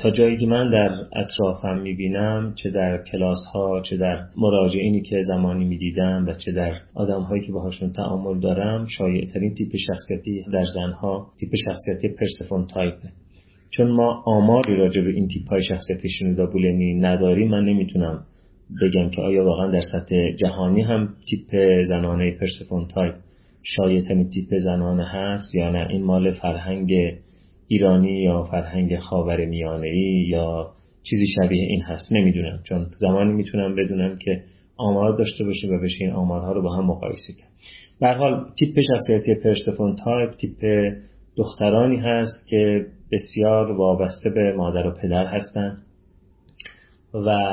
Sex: male